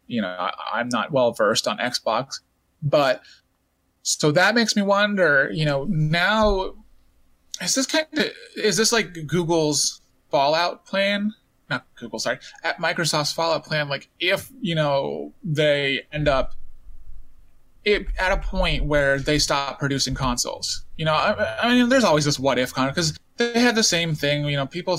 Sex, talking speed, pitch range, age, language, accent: male, 165 wpm, 130-180 Hz, 20-39, English, American